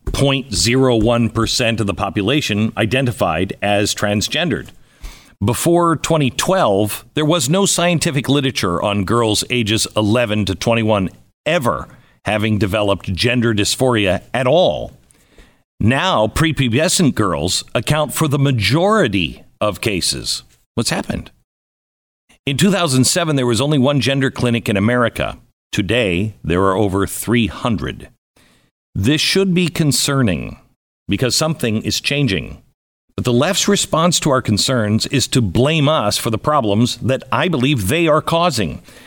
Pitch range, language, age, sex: 105-145 Hz, English, 50-69, male